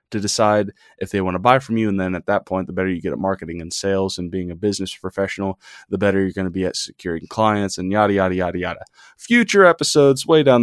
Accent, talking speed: American, 255 wpm